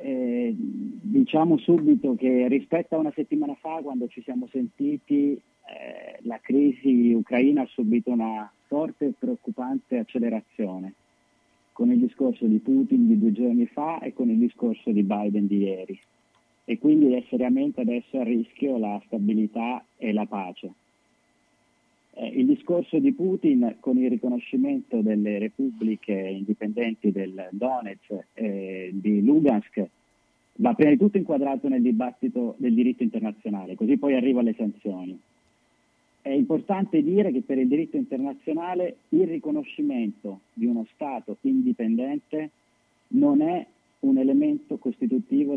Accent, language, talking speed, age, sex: native, Italian, 135 wpm, 30-49, male